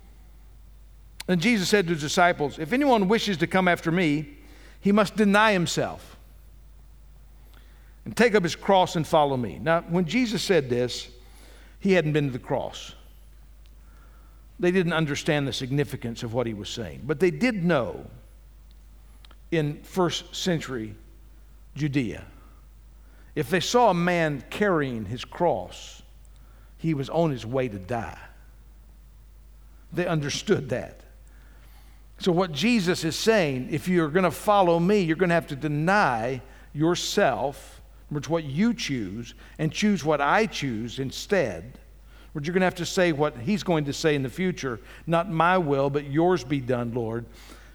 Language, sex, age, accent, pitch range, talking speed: English, male, 60-79, American, 120-180 Hz, 155 wpm